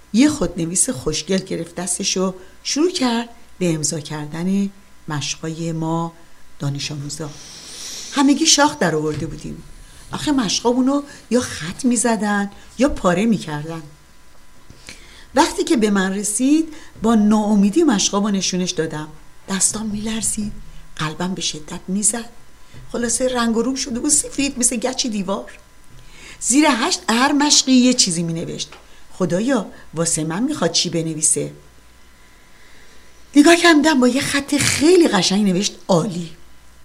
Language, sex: Persian, female